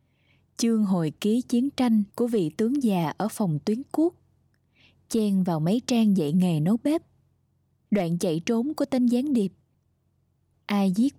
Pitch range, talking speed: 170-240 Hz, 160 wpm